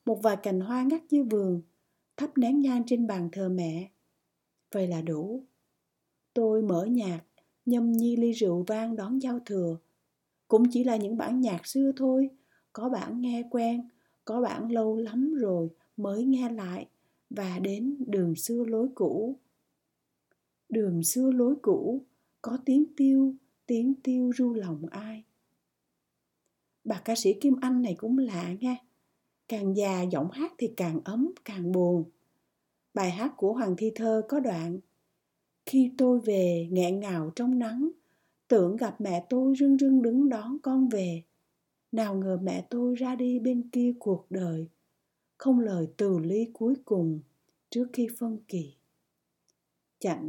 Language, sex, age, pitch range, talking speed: Vietnamese, female, 60-79, 185-250 Hz, 155 wpm